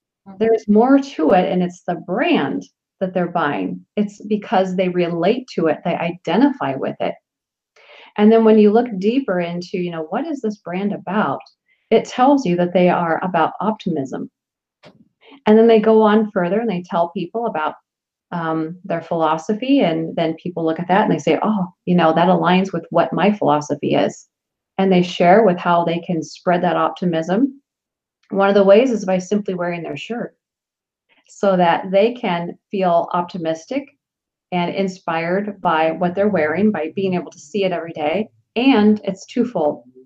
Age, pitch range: 30-49, 170-210 Hz